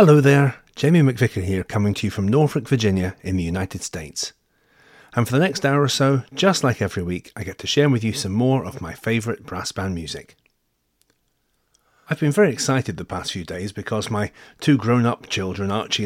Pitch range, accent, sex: 95-130 Hz, British, male